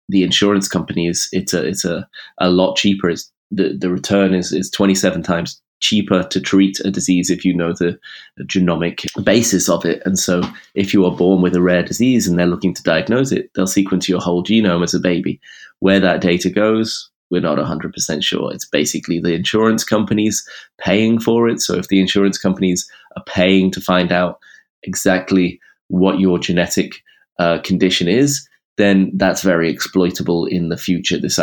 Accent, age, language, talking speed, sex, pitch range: British, 20-39, English, 185 wpm, male, 90-100 Hz